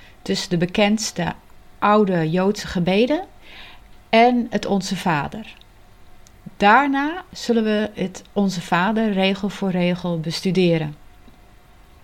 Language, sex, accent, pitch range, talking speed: Dutch, female, Dutch, 160-215 Hz, 100 wpm